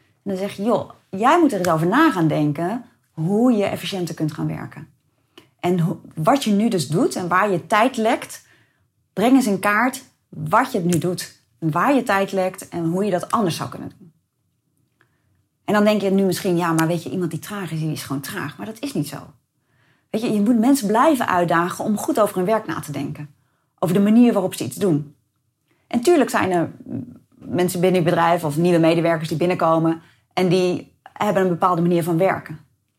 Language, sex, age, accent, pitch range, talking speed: Dutch, female, 30-49, Dutch, 155-220 Hz, 215 wpm